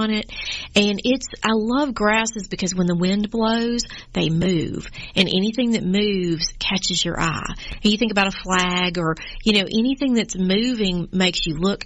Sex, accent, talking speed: female, American, 180 wpm